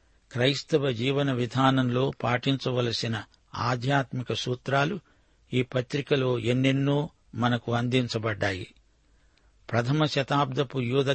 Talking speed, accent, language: 75 wpm, native, Telugu